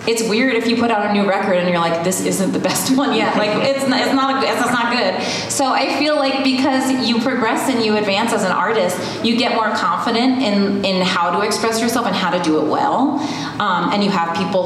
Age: 30-49